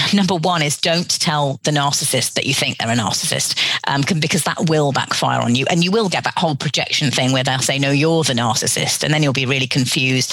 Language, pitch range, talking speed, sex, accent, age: English, 135-175 Hz, 240 wpm, female, British, 40-59